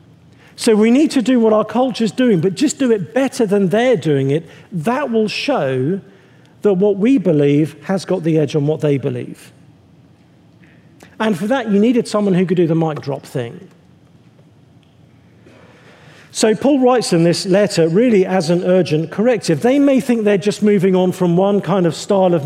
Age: 50-69